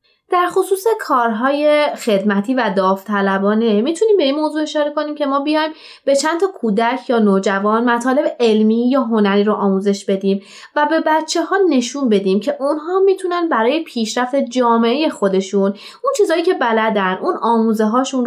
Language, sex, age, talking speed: Persian, female, 20-39, 150 wpm